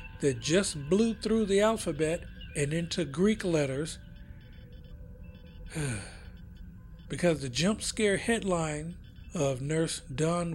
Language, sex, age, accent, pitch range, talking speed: English, male, 60-79, American, 135-180 Hz, 100 wpm